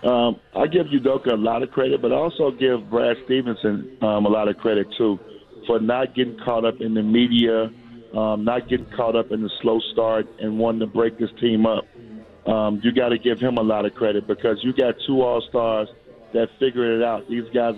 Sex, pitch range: male, 110-125 Hz